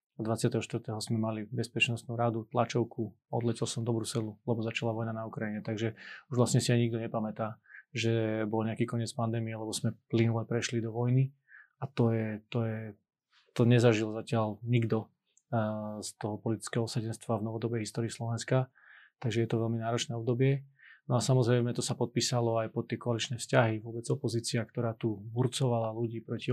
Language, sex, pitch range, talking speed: Slovak, male, 115-125 Hz, 165 wpm